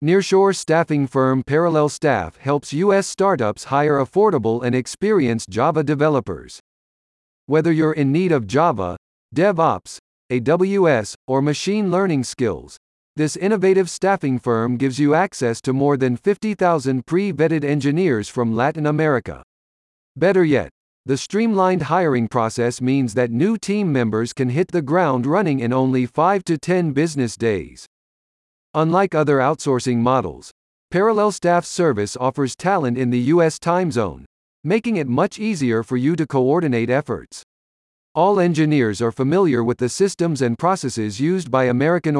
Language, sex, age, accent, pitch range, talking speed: English, male, 50-69, American, 125-175 Hz, 140 wpm